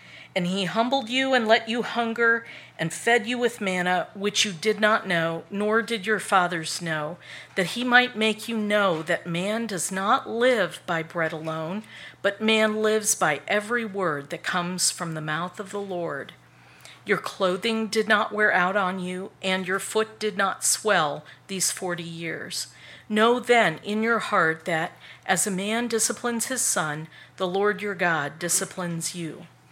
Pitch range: 175-220 Hz